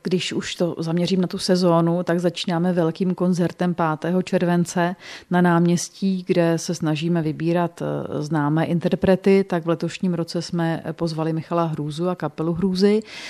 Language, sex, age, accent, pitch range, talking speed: Czech, female, 40-59, native, 170-185 Hz, 145 wpm